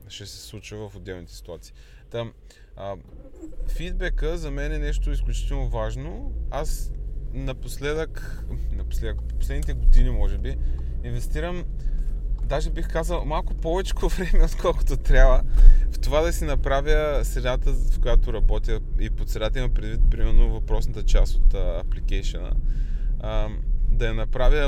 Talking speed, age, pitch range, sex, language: 135 wpm, 20-39, 100-135 Hz, male, Bulgarian